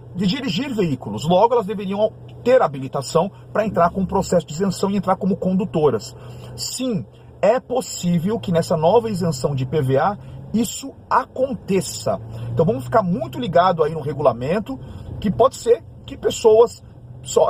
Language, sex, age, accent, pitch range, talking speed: Portuguese, male, 40-59, Brazilian, 150-210 Hz, 150 wpm